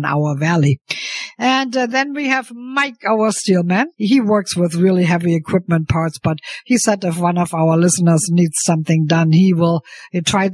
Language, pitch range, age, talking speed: English, 175-225 Hz, 50-69, 175 wpm